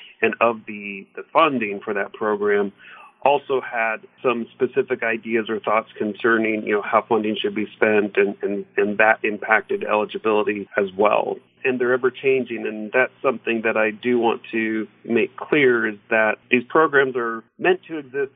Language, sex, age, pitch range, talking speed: English, male, 40-59, 110-140 Hz, 170 wpm